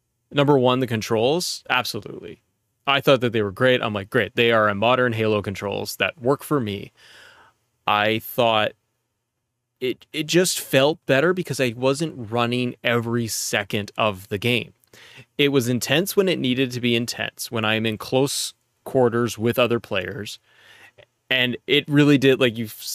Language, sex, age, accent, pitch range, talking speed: English, male, 20-39, American, 110-135 Hz, 165 wpm